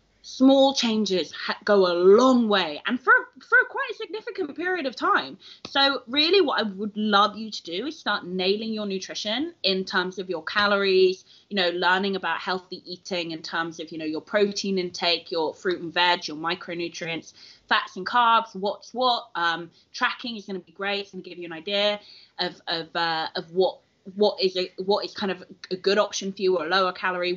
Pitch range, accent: 180-255 Hz, British